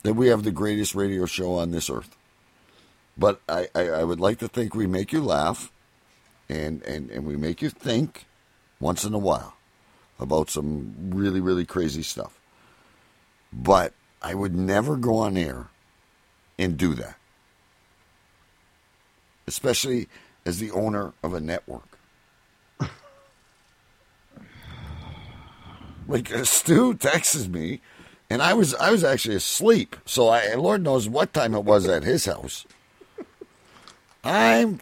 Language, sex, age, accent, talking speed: English, male, 60-79, American, 140 wpm